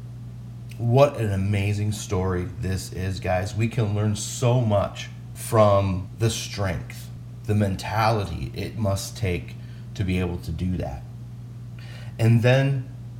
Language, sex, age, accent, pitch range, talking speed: English, male, 30-49, American, 105-120 Hz, 125 wpm